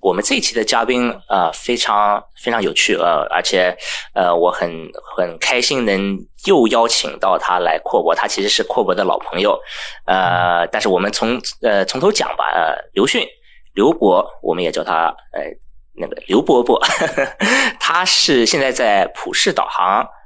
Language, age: Chinese, 20-39